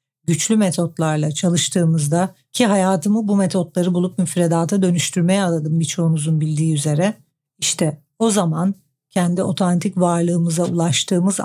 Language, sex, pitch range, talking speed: Turkish, female, 165-200 Hz, 110 wpm